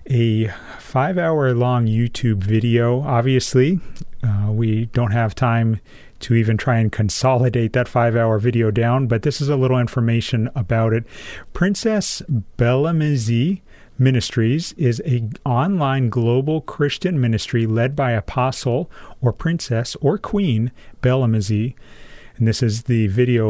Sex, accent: male, American